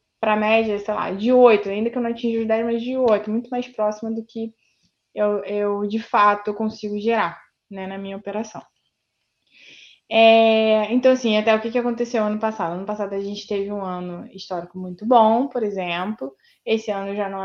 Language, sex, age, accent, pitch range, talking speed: Portuguese, female, 20-39, Brazilian, 205-245 Hz, 195 wpm